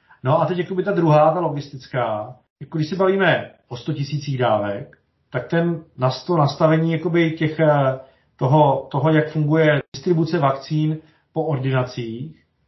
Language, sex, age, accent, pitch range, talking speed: Czech, male, 40-59, native, 135-165 Hz, 135 wpm